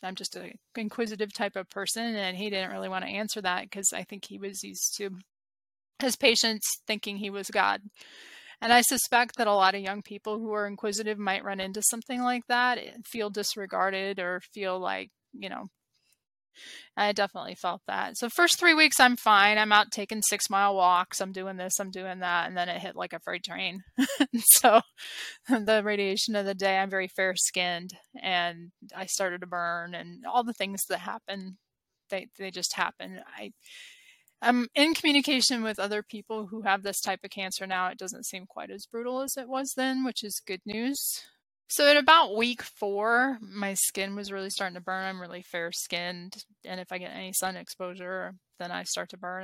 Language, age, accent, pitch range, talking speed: English, 20-39, American, 185-225 Hz, 200 wpm